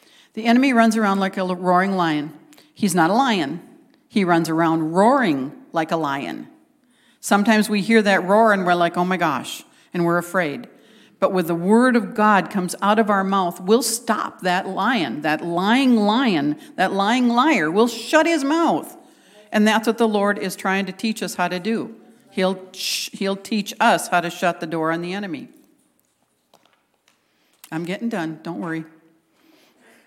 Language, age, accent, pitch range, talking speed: English, 50-69, American, 170-235 Hz, 175 wpm